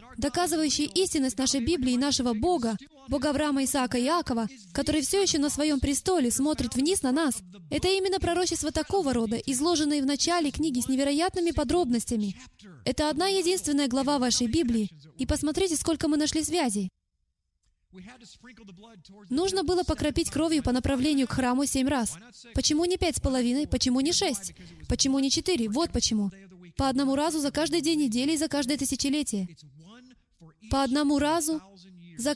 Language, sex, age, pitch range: Russian, female, 20-39, 240-315 Hz